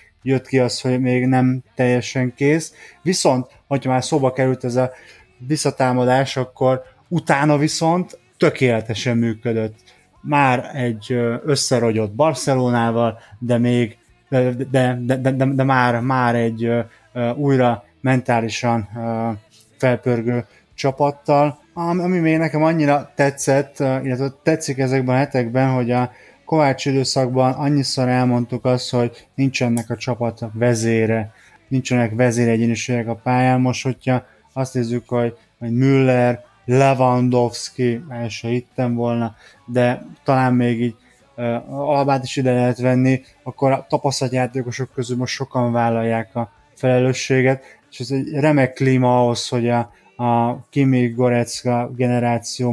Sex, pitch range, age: male, 120-135 Hz, 20-39